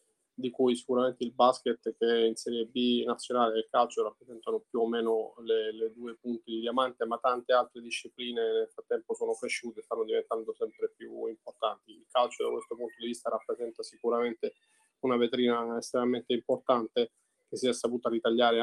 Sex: male